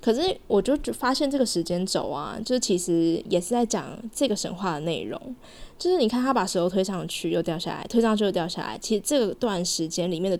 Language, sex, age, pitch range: Chinese, female, 20-39, 175-230 Hz